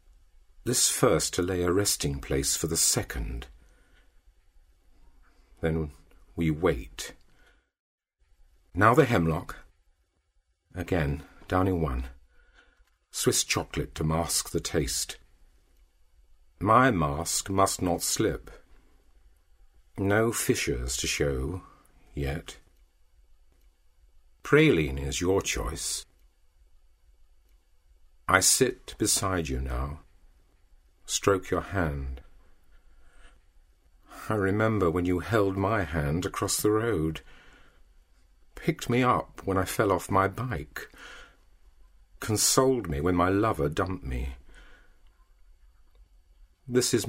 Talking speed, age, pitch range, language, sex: 95 wpm, 50-69, 70-90 Hz, English, male